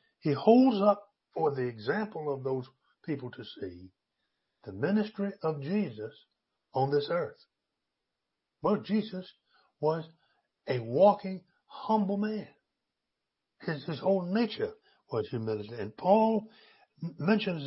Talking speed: 115 wpm